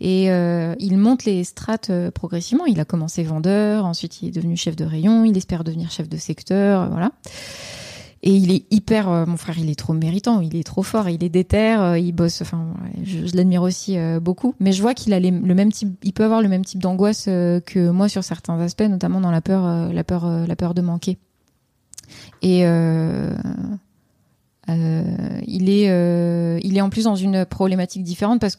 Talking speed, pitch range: 210 wpm, 175-205 Hz